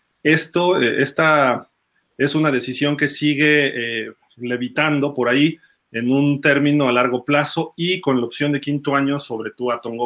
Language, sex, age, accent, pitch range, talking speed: Spanish, male, 30-49, Mexican, 135-170 Hz, 165 wpm